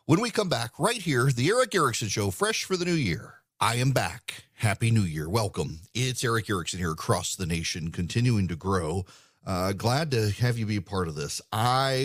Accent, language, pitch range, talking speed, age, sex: American, English, 105-135 Hz, 215 wpm, 40-59, male